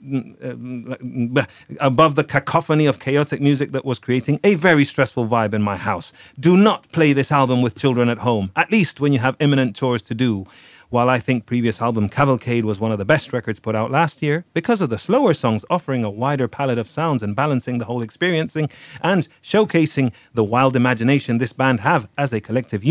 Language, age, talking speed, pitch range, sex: English, 30-49, 200 wpm, 115-145 Hz, male